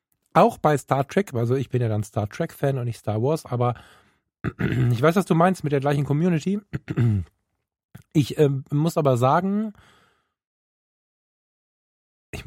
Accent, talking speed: German, 155 wpm